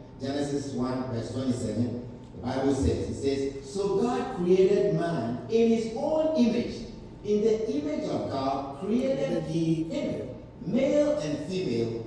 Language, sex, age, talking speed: English, male, 50-69, 140 wpm